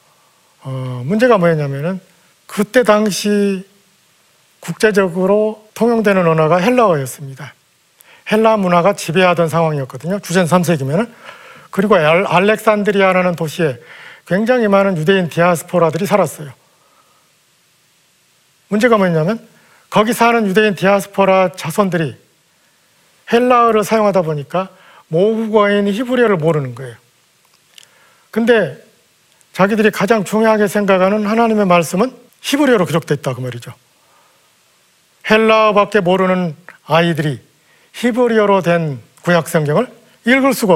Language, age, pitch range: Korean, 40-59, 160-215 Hz